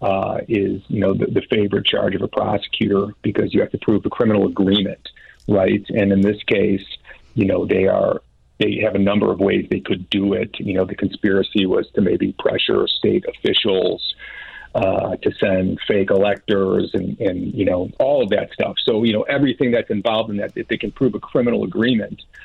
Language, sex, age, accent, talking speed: English, male, 40-59, American, 205 wpm